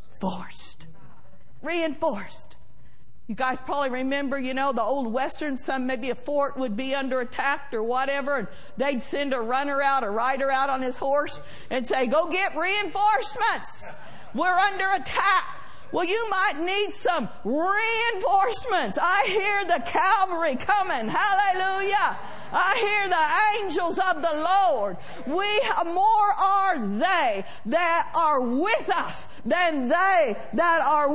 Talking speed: 140 wpm